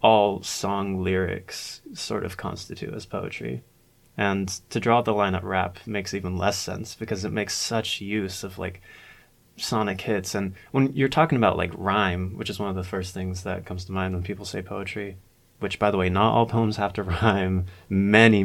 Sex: male